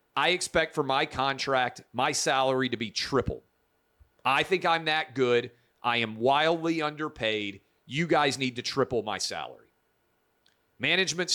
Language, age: English, 40-59